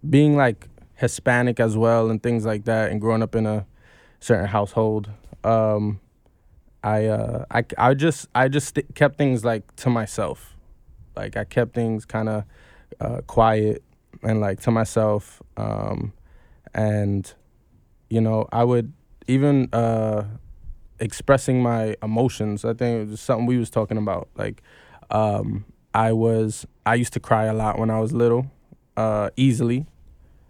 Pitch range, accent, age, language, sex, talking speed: 110-120 Hz, American, 20-39, English, male, 155 wpm